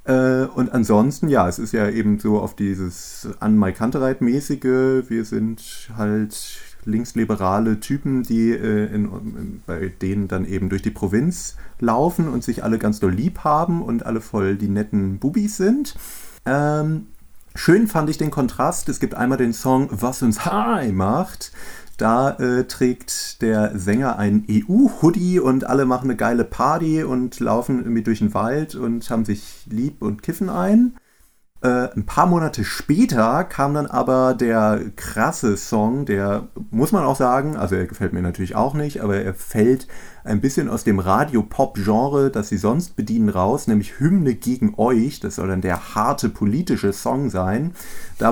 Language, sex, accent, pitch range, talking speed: German, male, German, 105-145 Hz, 160 wpm